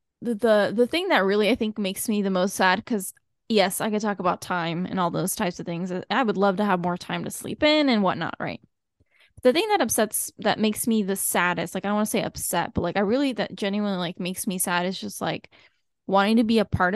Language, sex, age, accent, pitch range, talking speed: English, female, 10-29, American, 185-230 Hz, 260 wpm